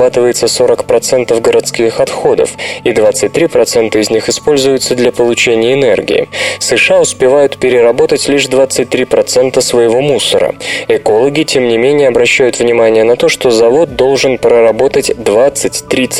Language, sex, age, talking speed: Russian, male, 20-39, 110 wpm